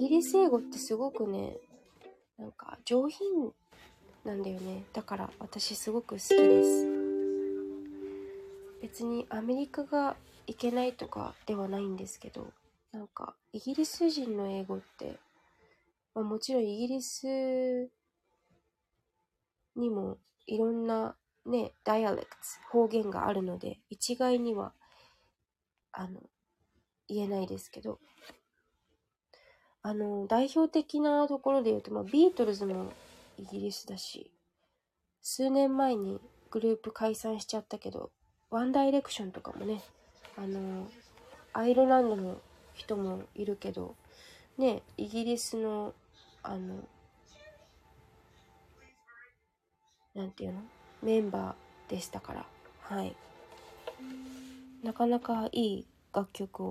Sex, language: female, Japanese